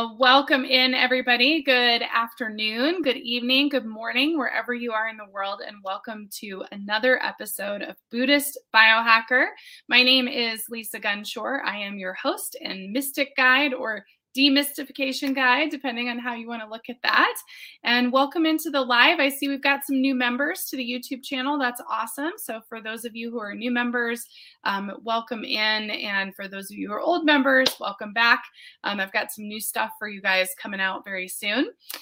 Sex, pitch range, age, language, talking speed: female, 220-270 Hz, 20-39, English, 185 wpm